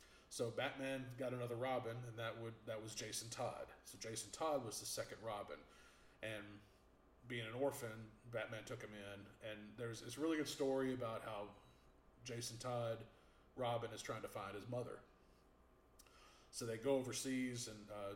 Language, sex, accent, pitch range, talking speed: English, male, American, 110-135 Hz, 165 wpm